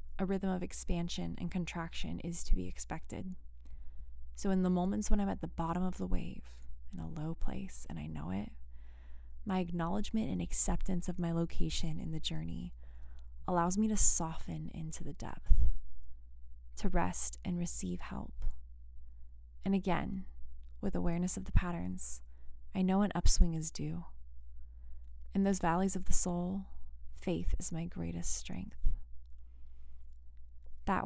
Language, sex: English, female